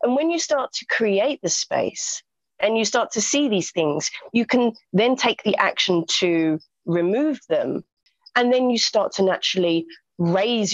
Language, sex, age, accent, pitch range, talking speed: English, female, 30-49, British, 175-240 Hz, 175 wpm